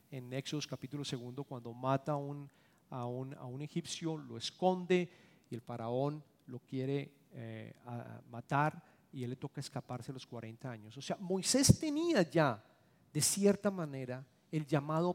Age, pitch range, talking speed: 40-59, 120-155 Hz, 160 wpm